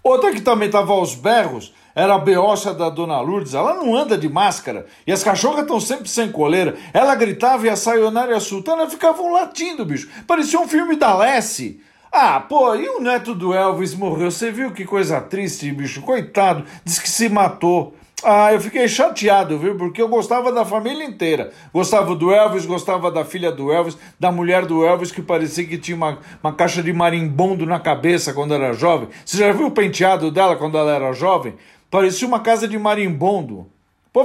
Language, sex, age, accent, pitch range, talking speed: Portuguese, male, 50-69, Brazilian, 175-225 Hz, 195 wpm